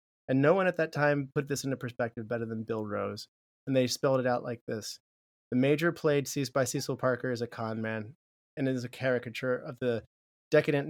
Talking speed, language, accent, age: 210 wpm, English, American, 30-49